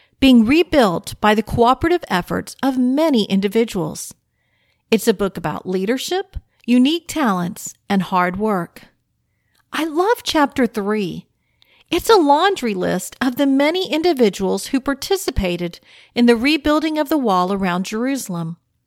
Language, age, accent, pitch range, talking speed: English, 50-69, American, 200-295 Hz, 130 wpm